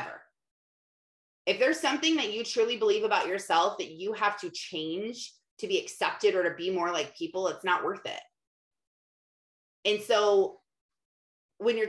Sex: female